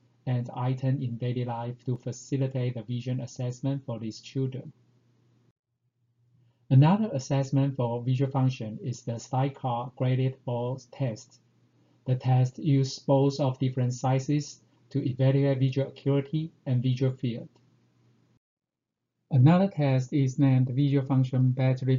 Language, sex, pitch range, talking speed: English, male, 125-135 Hz, 125 wpm